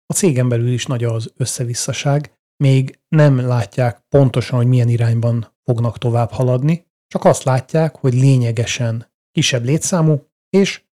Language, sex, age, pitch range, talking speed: Hungarian, male, 30-49, 115-135 Hz, 135 wpm